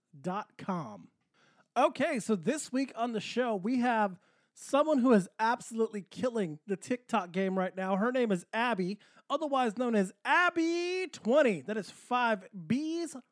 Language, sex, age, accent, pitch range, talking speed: English, male, 30-49, American, 200-255 Hz, 145 wpm